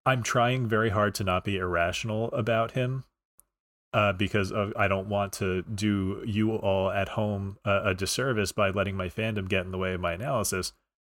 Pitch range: 95-115 Hz